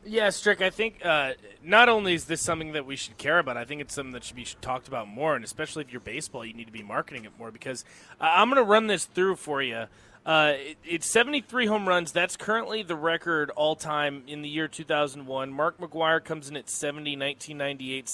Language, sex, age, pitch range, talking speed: English, male, 20-39, 135-180 Hz, 225 wpm